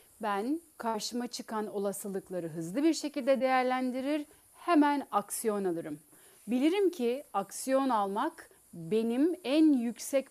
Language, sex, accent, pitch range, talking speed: Turkish, female, native, 205-275 Hz, 105 wpm